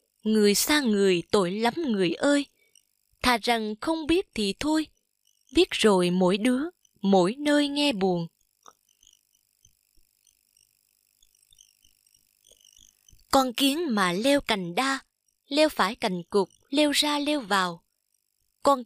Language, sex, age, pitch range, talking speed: Vietnamese, female, 20-39, 185-285 Hz, 115 wpm